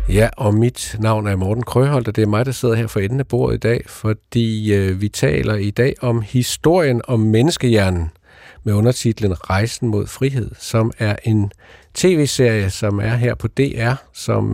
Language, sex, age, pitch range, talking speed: Danish, male, 50-69, 105-130 Hz, 185 wpm